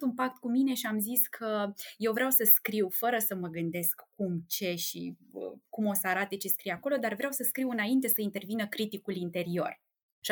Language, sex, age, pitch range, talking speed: Romanian, female, 20-39, 200-265 Hz, 210 wpm